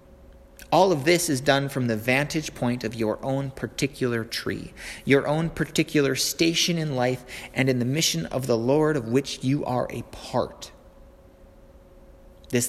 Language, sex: English, male